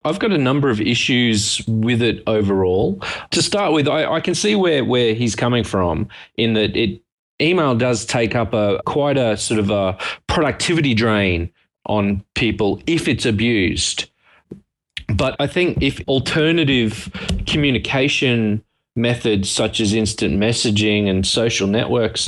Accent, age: Australian, 30-49